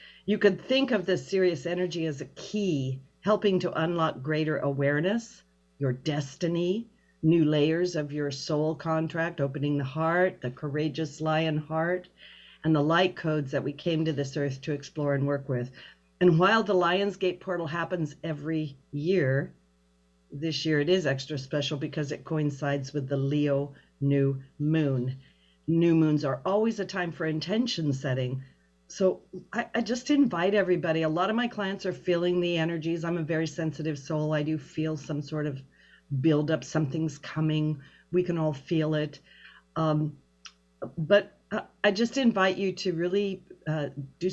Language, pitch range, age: English, 145-185 Hz, 50-69